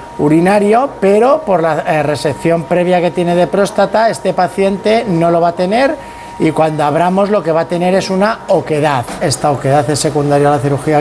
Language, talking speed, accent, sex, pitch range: Spanish, 190 wpm, Spanish, male, 145-175 Hz